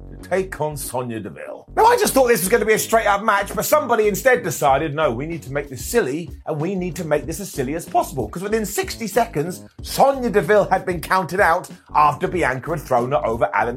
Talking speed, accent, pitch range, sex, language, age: 240 wpm, British, 155-225 Hz, male, English, 30-49